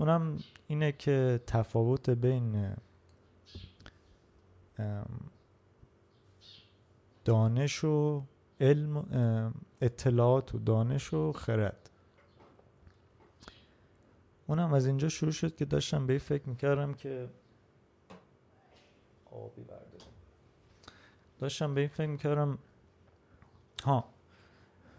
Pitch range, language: 105-135 Hz, Persian